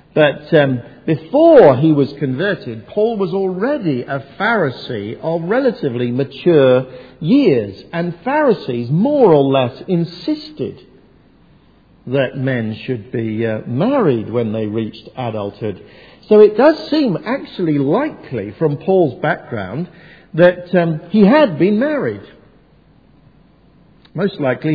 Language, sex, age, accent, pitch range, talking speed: English, male, 50-69, British, 125-175 Hz, 115 wpm